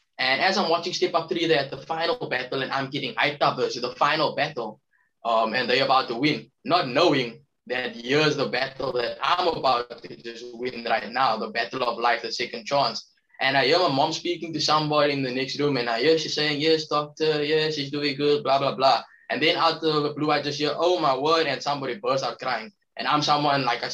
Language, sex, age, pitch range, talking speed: English, male, 10-29, 125-155 Hz, 240 wpm